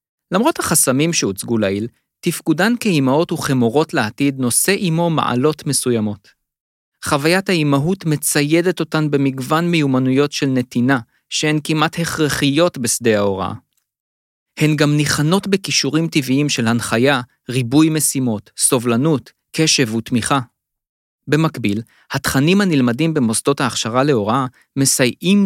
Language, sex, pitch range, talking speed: Hebrew, male, 120-155 Hz, 105 wpm